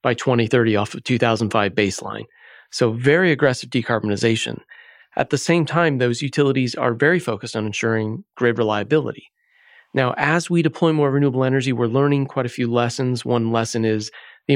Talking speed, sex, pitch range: 165 wpm, male, 110-135 Hz